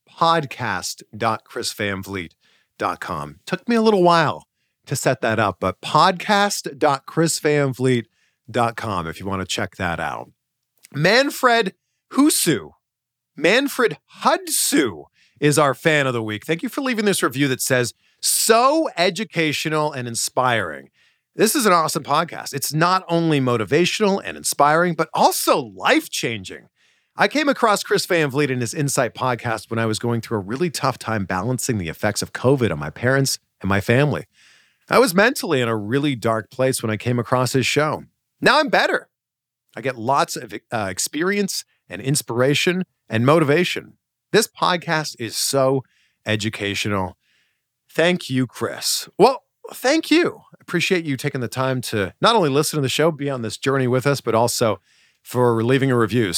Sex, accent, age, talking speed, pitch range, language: male, American, 40-59, 160 wpm, 115-170 Hz, English